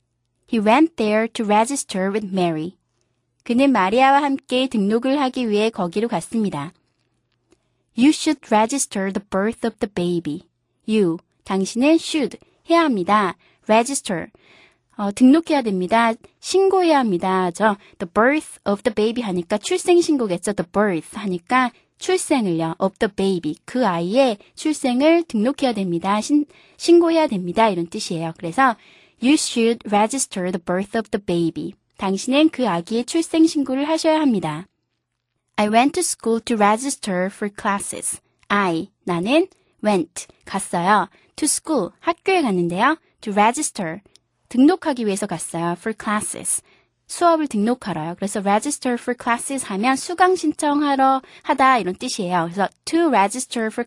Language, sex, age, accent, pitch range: Korean, female, 20-39, native, 195-280 Hz